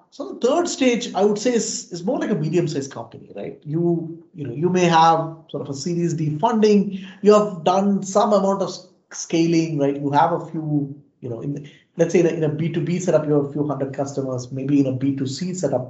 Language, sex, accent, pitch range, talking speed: English, male, Indian, 140-205 Hz, 250 wpm